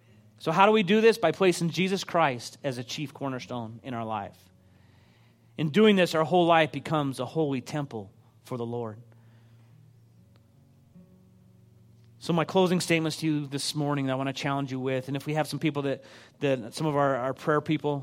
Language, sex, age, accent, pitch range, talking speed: English, male, 30-49, American, 120-160 Hz, 195 wpm